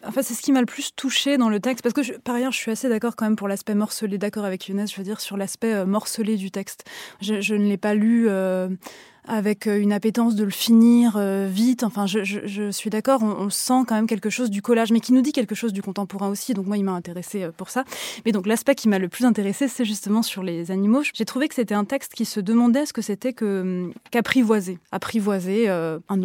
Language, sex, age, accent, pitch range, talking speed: French, female, 20-39, French, 195-240 Hz, 260 wpm